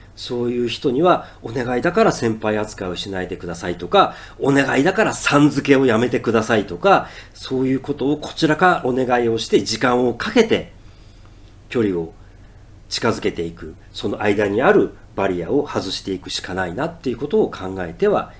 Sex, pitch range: male, 100-135 Hz